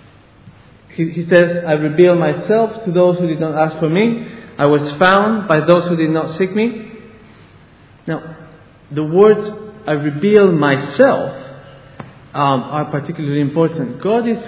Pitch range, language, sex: 140-180 Hz, English, male